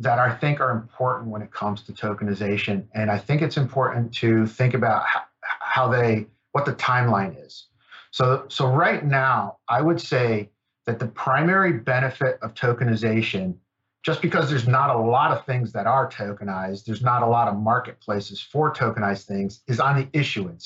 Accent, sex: American, male